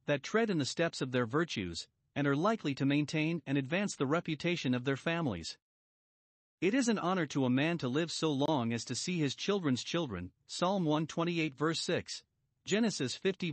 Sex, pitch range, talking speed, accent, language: male, 125-175 Hz, 190 wpm, American, English